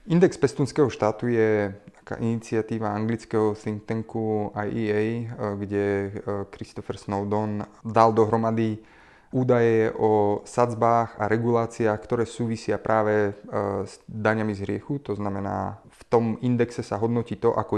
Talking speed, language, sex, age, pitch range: 120 wpm, Slovak, male, 30-49, 105-120 Hz